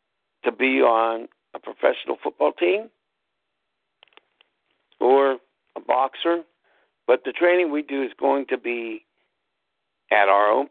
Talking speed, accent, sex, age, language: 125 wpm, American, male, 60-79, English